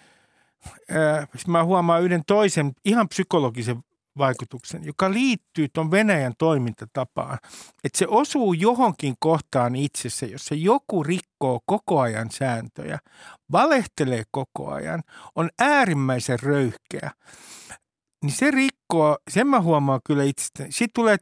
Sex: male